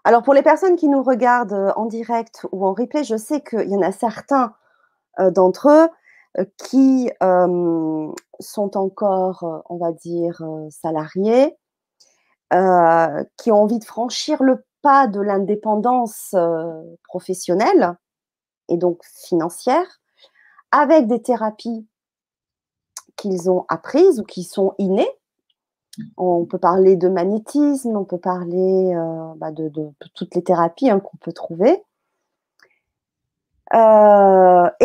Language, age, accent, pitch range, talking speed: French, 40-59, French, 185-265 Hz, 125 wpm